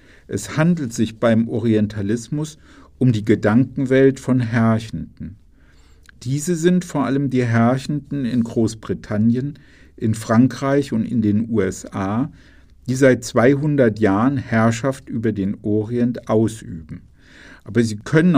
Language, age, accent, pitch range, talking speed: German, 50-69, German, 110-135 Hz, 120 wpm